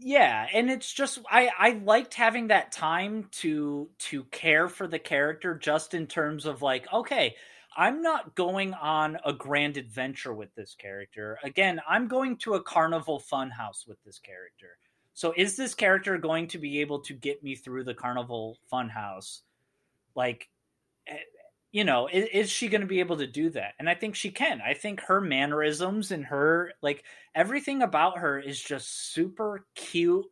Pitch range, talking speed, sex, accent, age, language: 135-190 Hz, 175 wpm, male, American, 30-49, English